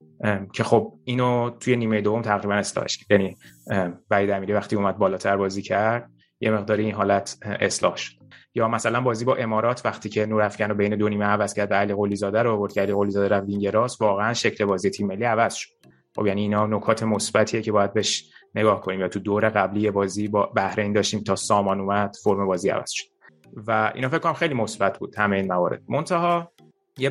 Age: 20-39